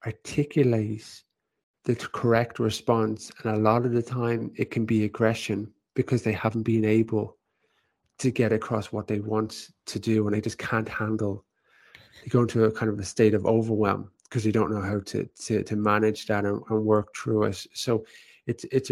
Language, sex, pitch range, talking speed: English, male, 110-140 Hz, 190 wpm